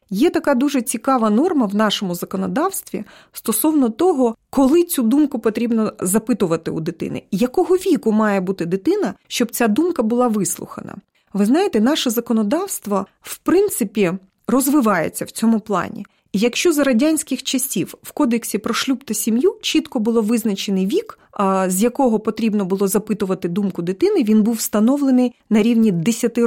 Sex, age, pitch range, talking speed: female, 30-49, 205-275 Hz, 145 wpm